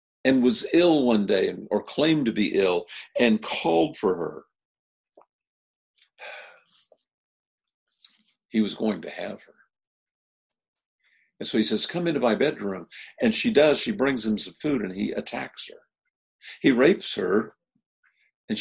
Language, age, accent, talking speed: English, 50-69, American, 140 wpm